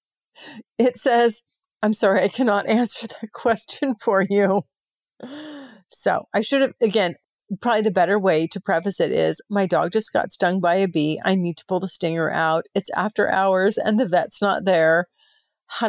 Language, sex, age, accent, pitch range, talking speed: English, female, 40-59, American, 180-230 Hz, 180 wpm